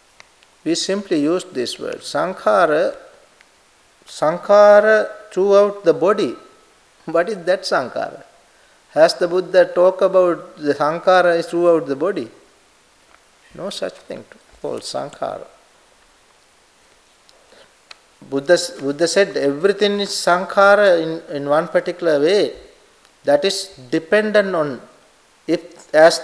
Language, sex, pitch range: English, male, 165-205 Hz